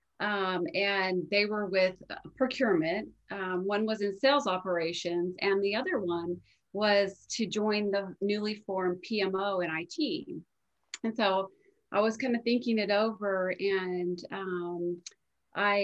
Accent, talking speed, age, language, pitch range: American, 140 wpm, 30-49, English, 175-215 Hz